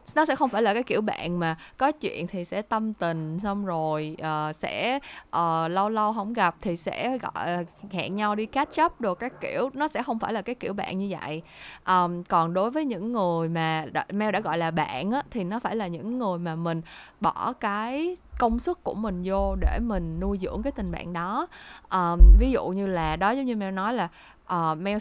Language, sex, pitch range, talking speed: Vietnamese, female, 175-240 Hz, 225 wpm